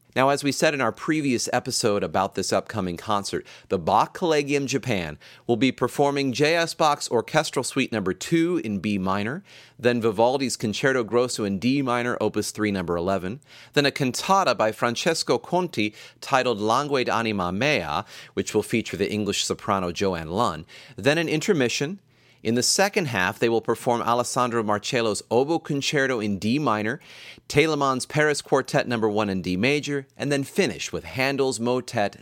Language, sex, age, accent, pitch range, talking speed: English, male, 30-49, American, 100-140 Hz, 165 wpm